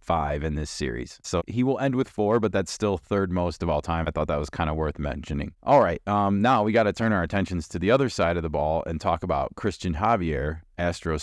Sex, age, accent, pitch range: male, 30-49, American, 80-105 Hz